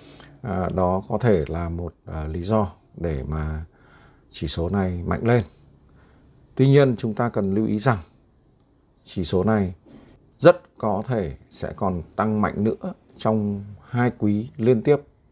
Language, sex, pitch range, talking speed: Vietnamese, male, 90-115 Hz, 155 wpm